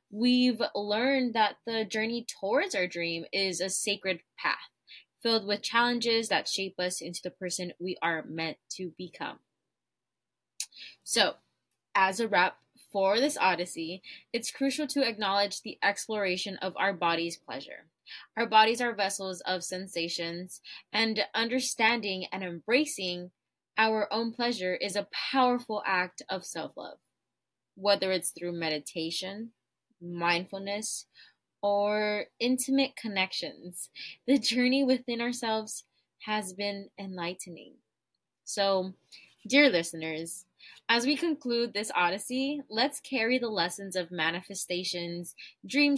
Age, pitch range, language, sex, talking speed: 20-39, 180-240 Hz, English, female, 120 wpm